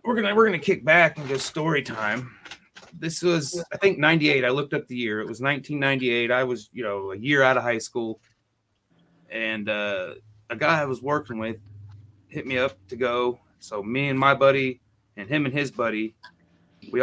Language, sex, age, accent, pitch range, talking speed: English, male, 30-49, American, 110-135 Hz, 200 wpm